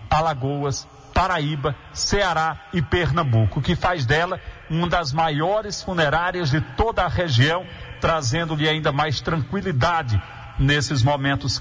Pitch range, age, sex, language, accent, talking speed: 125-175 Hz, 50-69, male, Portuguese, Brazilian, 115 wpm